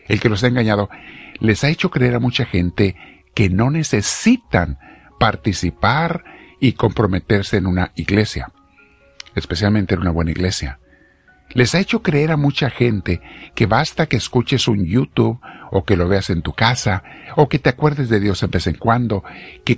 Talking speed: 175 wpm